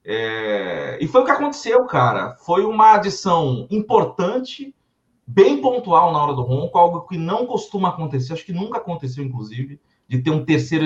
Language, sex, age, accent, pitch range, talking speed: Portuguese, male, 40-59, Brazilian, 130-215 Hz, 165 wpm